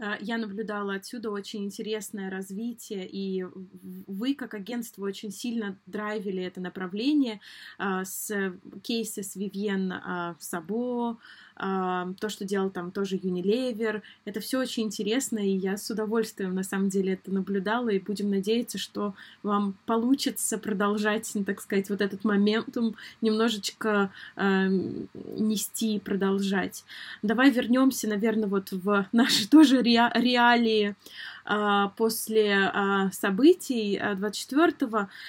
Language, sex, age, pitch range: Russian, female, 20-39, 200-235 Hz